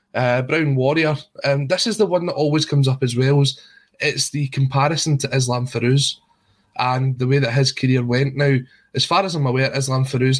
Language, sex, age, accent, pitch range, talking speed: English, male, 20-39, British, 125-140 Hz, 210 wpm